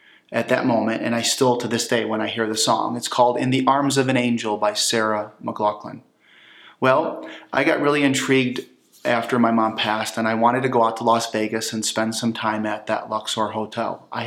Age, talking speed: 30-49, 220 wpm